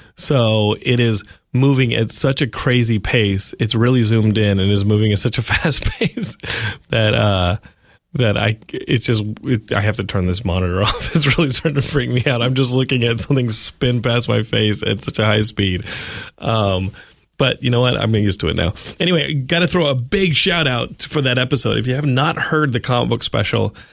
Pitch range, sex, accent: 105-140 Hz, male, American